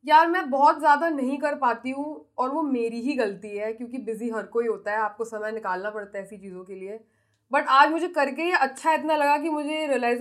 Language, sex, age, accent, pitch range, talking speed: Hindi, female, 20-39, native, 215-295 Hz, 230 wpm